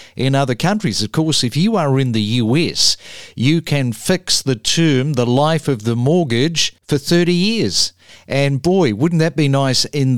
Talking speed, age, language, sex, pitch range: 185 wpm, 50-69, English, male, 130-165 Hz